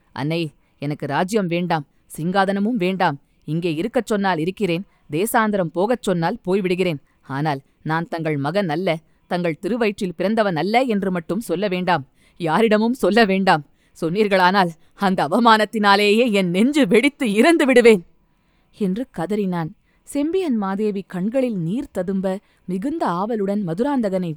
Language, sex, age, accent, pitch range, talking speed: Tamil, female, 20-39, native, 170-220 Hz, 115 wpm